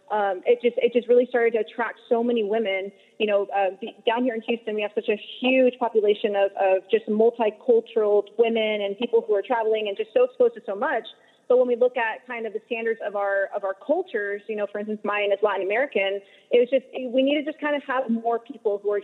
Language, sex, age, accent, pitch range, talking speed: English, female, 30-49, American, 210-255 Hz, 250 wpm